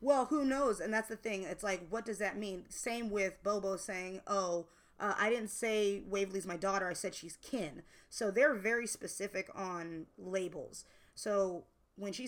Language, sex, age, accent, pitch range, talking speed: English, female, 20-39, American, 185-220 Hz, 185 wpm